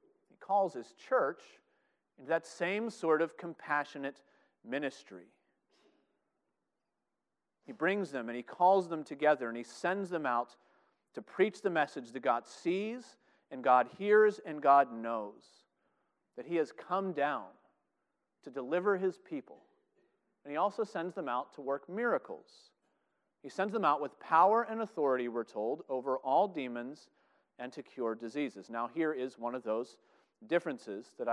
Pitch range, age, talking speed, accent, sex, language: 135-195 Hz, 40-59, 150 wpm, American, male, English